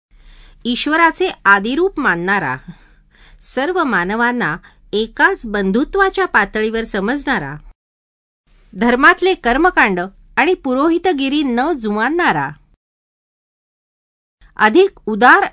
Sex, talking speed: female, 45 wpm